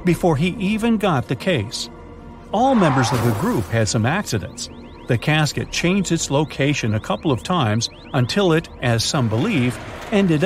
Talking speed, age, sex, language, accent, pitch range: 165 wpm, 50-69, male, English, American, 115-165 Hz